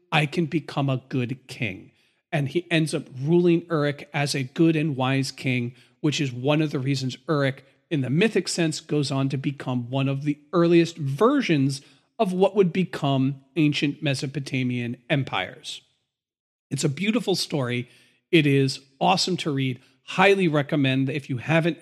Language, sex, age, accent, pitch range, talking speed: English, male, 40-59, American, 130-160 Hz, 160 wpm